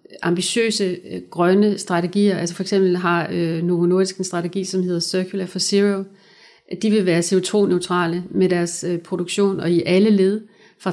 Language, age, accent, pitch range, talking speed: Danish, 60-79, native, 175-195 Hz, 155 wpm